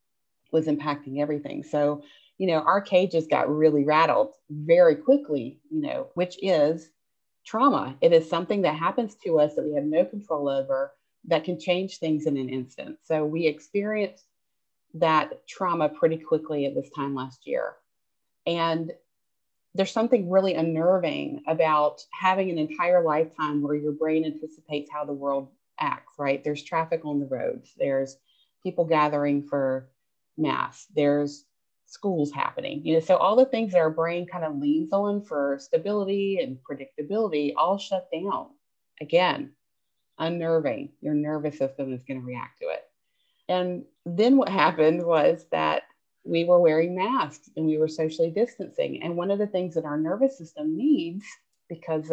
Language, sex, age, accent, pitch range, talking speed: English, female, 30-49, American, 150-205 Hz, 160 wpm